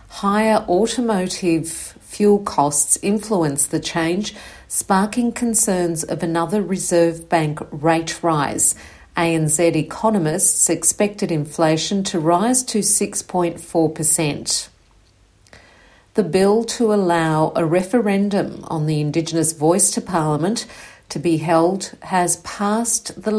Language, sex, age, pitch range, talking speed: English, female, 50-69, 160-200 Hz, 105 wpm